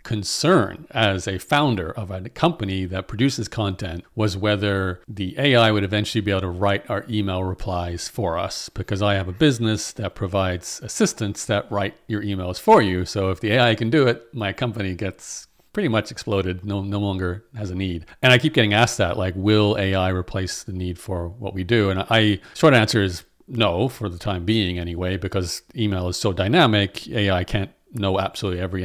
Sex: male